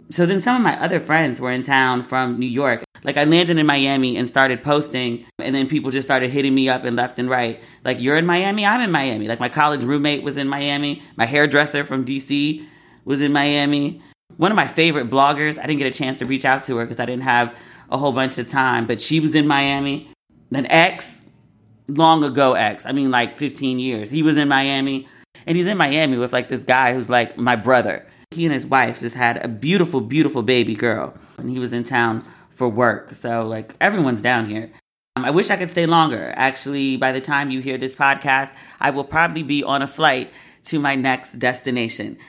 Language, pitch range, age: English, 125-150 Hz, 30-49